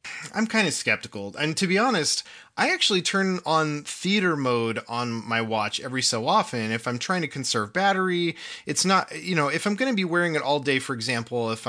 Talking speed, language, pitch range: 215 wpm, English, 115-160 Hz